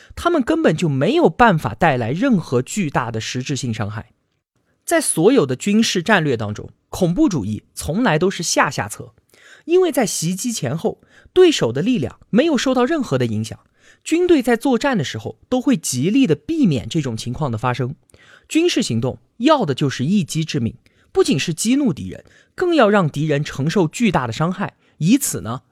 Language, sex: Chinese, male